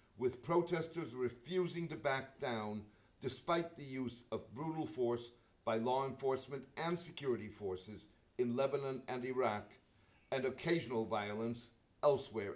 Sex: male